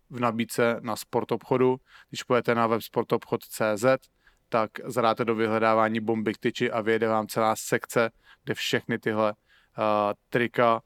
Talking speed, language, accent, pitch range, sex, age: 140 wpm, English, Czech, 110-125 Hz, male, 30-49